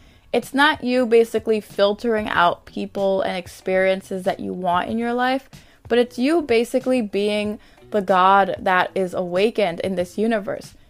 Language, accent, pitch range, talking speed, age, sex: English, American, 185-240 Hz, 155 wpm, 20-39, female